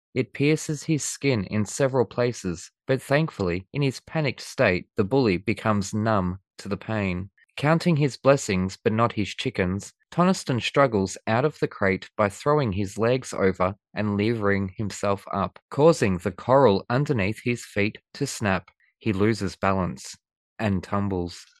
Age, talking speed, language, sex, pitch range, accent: 20-39, 155 wpm, English, male, 100-135 Hz, Australian